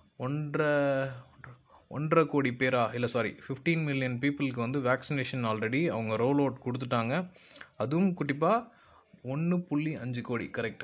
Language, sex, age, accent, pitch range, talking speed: Tamil, male, 20-39, native, 115-140 Hz, 120 wpm